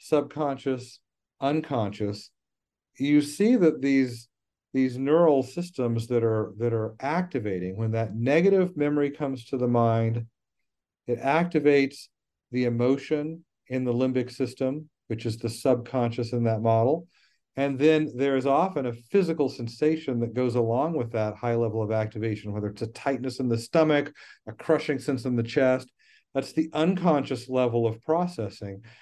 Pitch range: 115-145 Hz